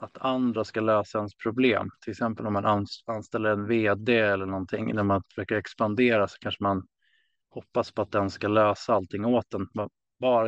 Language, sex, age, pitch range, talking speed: Swedish, male, 20-39, 100-120 Hz, 185 wpm